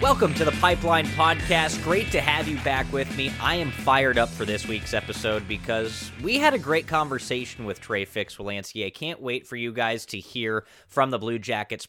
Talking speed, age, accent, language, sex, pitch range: 205 wpm, 20-39, American, English, male, 110-145 Hz